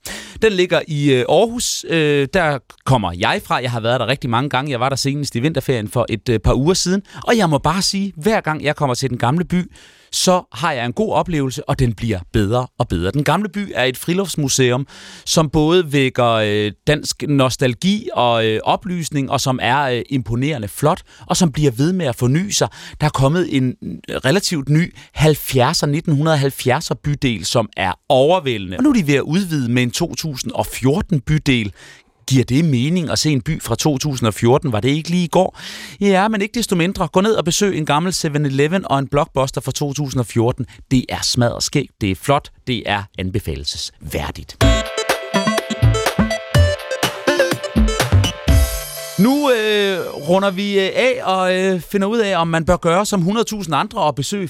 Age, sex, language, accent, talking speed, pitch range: 30-49, male, Danish, native, 180 wpm, 120-175 Hz